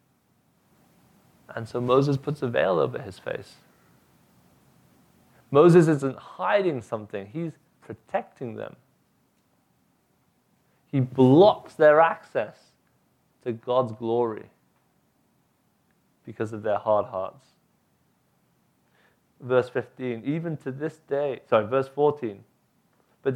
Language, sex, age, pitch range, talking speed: English, male, 30-49, 125-160 Hz, 100 wpm